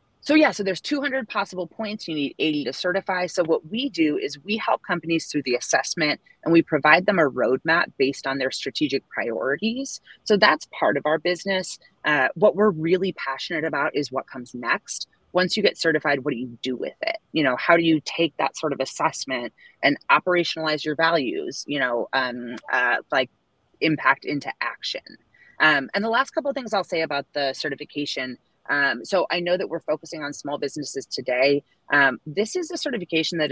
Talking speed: 200 wpm